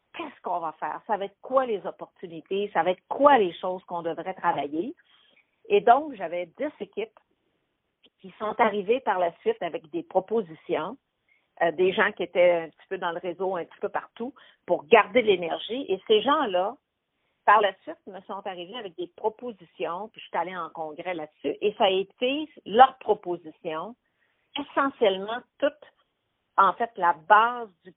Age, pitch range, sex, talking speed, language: 50-69, 175-235 Hz, female, 180 wpm, French